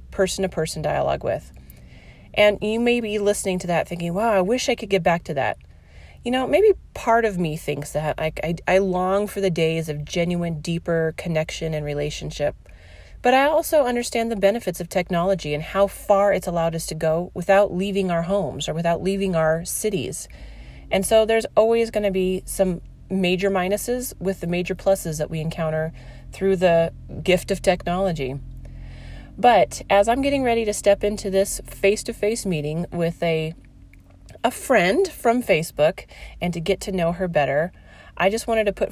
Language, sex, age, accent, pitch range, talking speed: English, female, 30-49, American, 160-200 Hz, 180 wpm